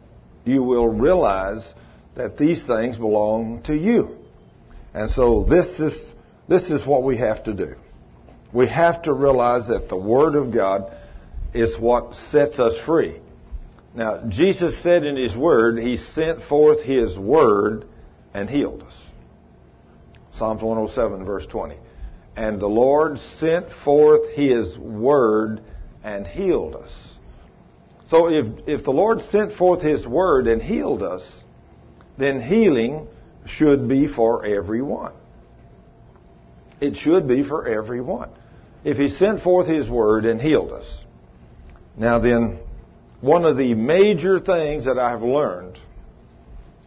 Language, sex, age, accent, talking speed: English, male, 50-69, American, 130 wpm